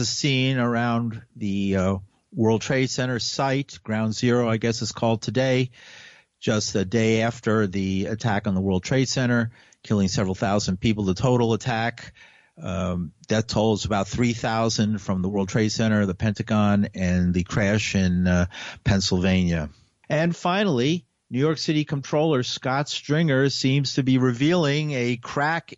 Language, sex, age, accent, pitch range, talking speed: English, male, 50-69, American, 105-125 Hz, 160 wpm